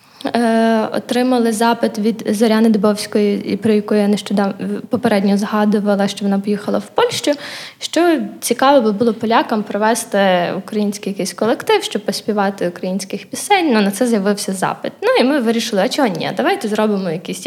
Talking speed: 150 wpm